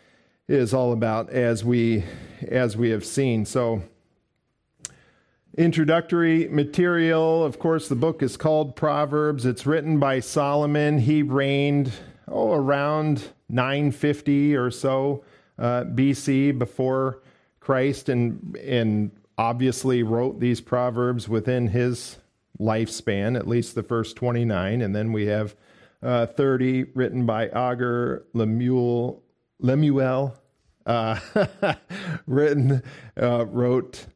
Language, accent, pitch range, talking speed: English, American, 120-145 Hz, 110 wpm